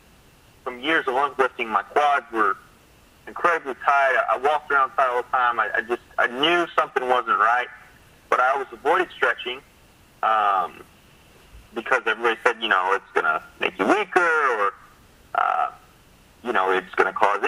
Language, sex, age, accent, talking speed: English, male, 30-49, American, 165 wpm